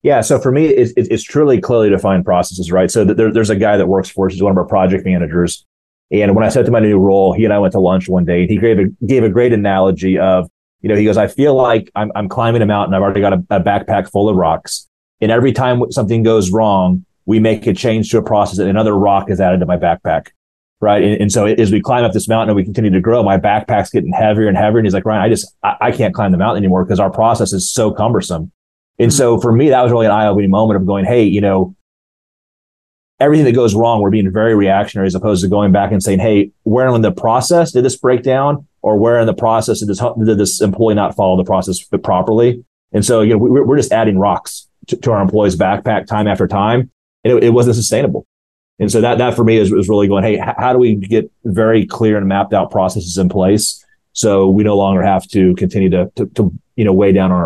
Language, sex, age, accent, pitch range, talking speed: English, male, 30-49, American, 95-110 Hz, 260 wpm